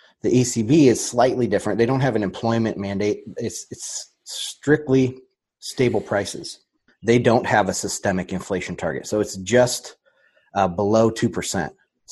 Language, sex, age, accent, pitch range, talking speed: English, male, 30-49, American, 100-120 Hz, 145 wpm